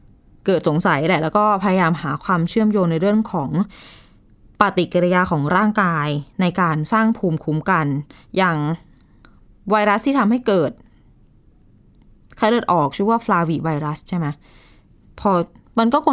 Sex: female